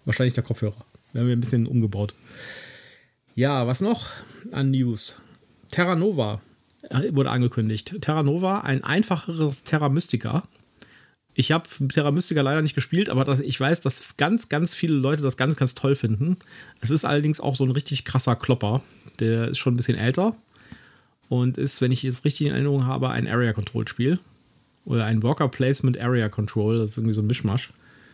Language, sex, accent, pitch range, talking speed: German, male, German, 115-140 Hz, 175 wpm